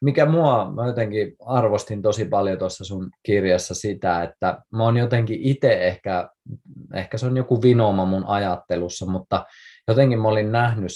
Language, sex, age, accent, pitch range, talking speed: Finnish, male, 20-39, native, 90-110 Hz, 160 wpm